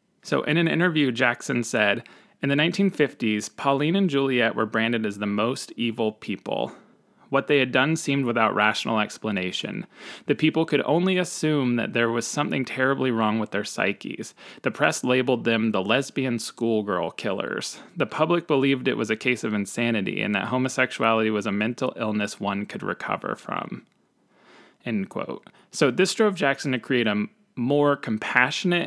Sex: male